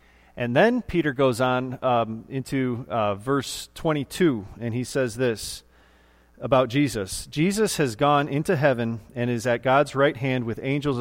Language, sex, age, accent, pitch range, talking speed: English, male, 40-59, American, 105-140 Hz, 160 wpm